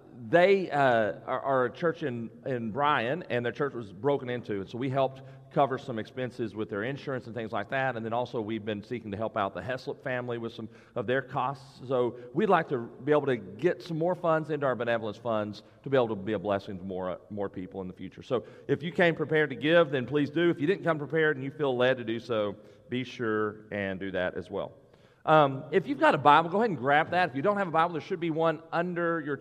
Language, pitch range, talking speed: English, 120-165 Hz, 260 wpm